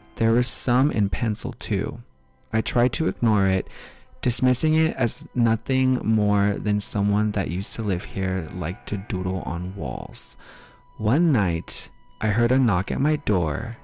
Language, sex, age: English, male, 20-39